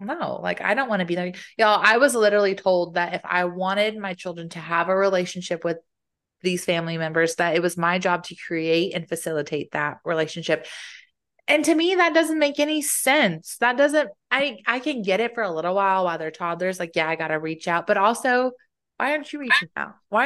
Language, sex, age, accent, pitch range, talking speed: English, female, 20-39, American, 170-220 Hz, 220 wpm